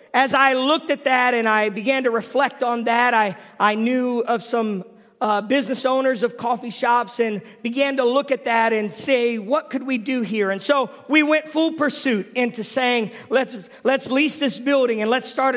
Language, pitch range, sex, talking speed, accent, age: English, 225-275 Hz, male, 200 wpm, American, 40-59